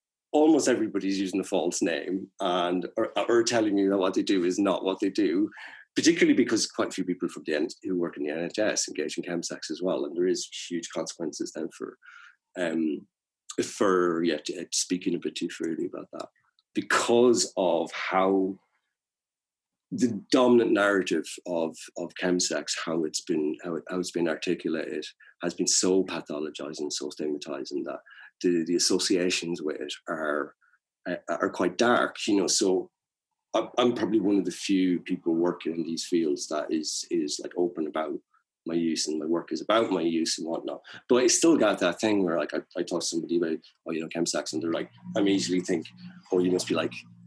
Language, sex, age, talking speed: English, male, 30-49, 195 wpm